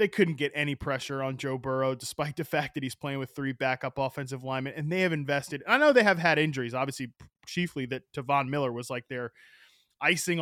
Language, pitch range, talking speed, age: English, 130-160 Hz, 220 wpm, 20-39